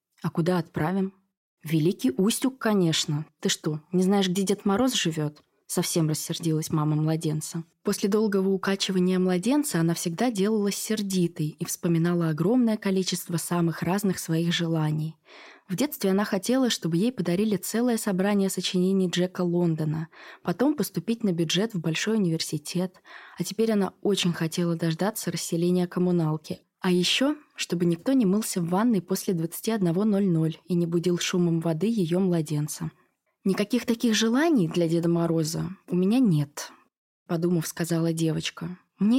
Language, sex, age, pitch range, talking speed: Russian, female, 20-39, 170-205 Hz, 140 wpm